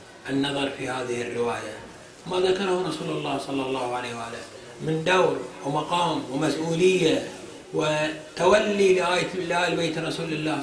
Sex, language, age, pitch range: male, Arabic, 30-49, 165-220 Hz